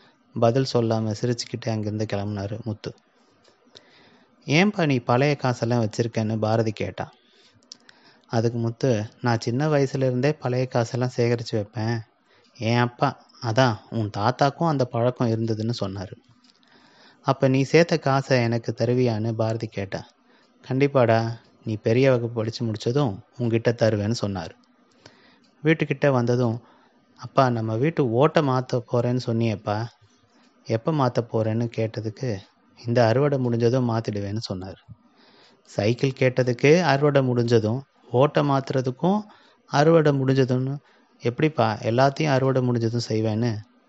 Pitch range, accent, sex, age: 115-135 Hz, native, male, 30-49